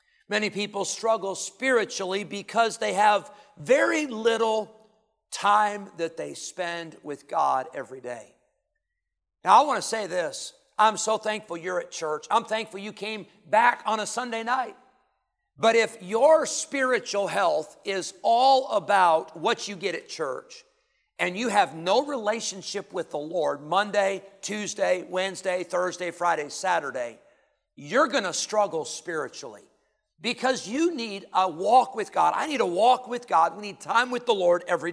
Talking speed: 155 wpm